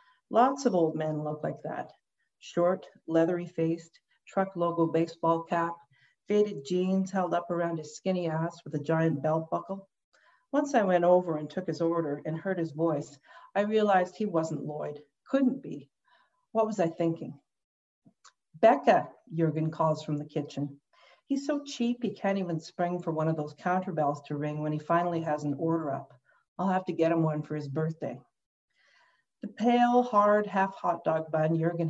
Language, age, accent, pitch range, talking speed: English, 50-69, American, 155-195 Hz, 175 wpm